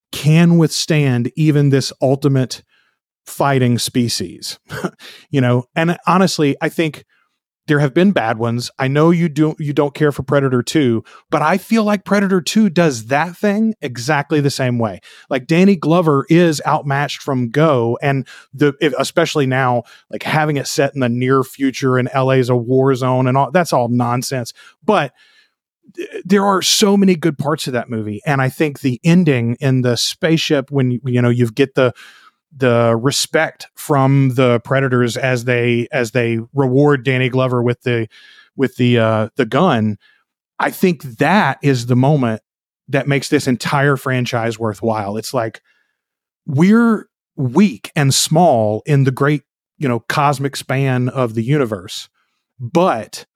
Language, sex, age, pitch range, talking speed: English, male, 30-49, 125-155 Hz, 160 wpm